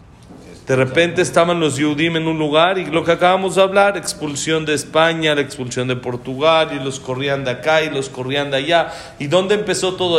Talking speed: 205 wpm